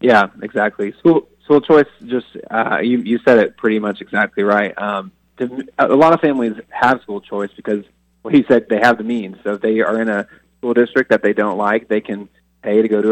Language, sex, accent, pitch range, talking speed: English, male, American, 100-115 Hz, 230 wpm